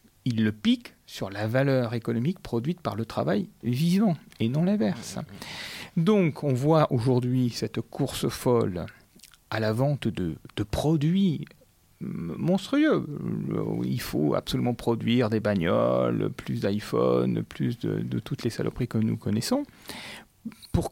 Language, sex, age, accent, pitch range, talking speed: French, male, 40-59, French, 115-175 Hz, 135 wpm